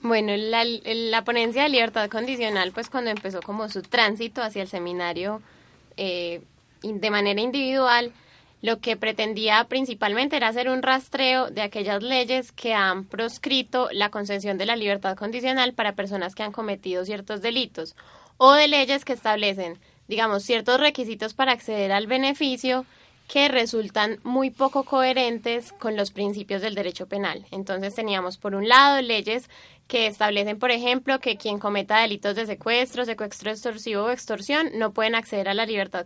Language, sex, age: Spanish, female, 10-29